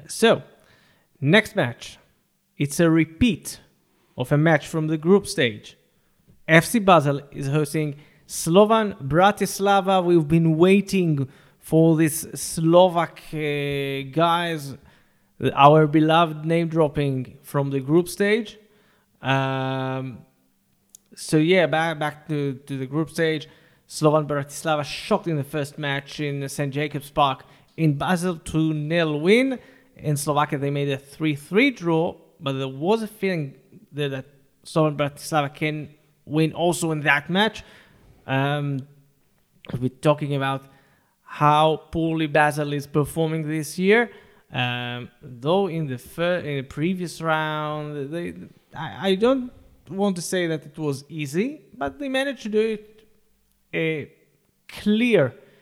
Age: 30-49